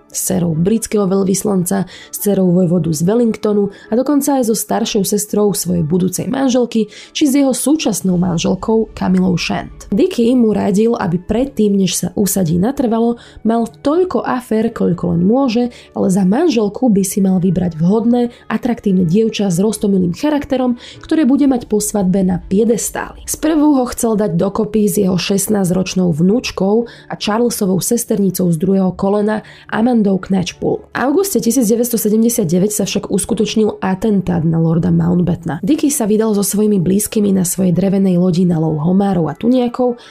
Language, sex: Slovak, female